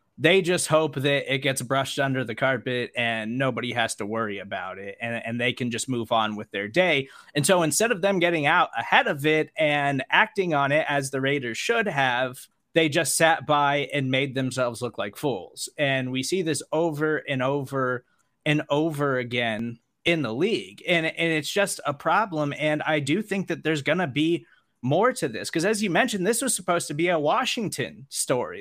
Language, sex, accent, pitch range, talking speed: English, male, American, 130-170 Hz, 210 wpm